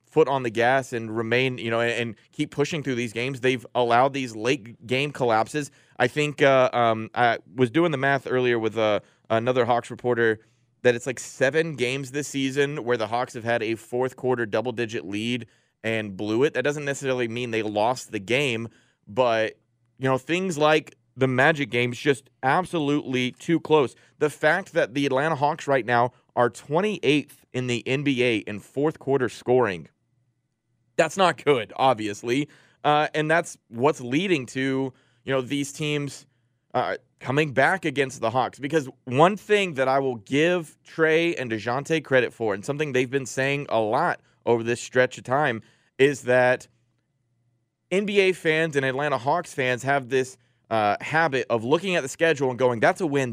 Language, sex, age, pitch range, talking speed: English, male, 30-49, 120-145 Hz, 175 wpm